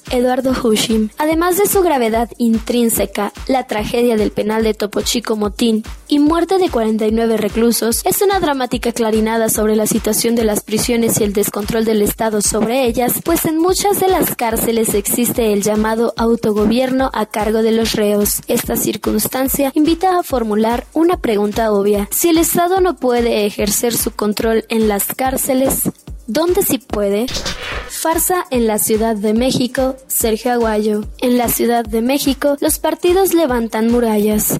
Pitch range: 220-265 Hz